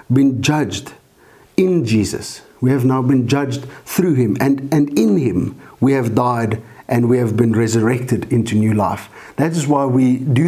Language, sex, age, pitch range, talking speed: English, male, 50-69, 115-135 Hz, 180 wpm